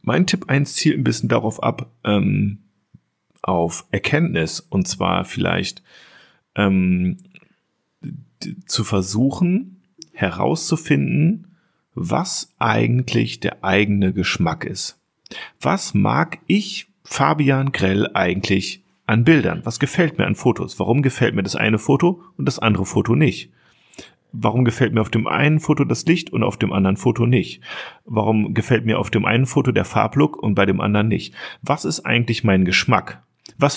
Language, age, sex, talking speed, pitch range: German, 40-59, male, 145 wpm, 100-160 Hz